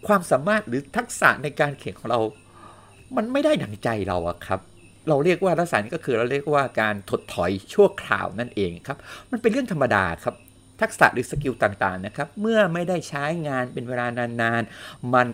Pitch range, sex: 100-145 Hz, male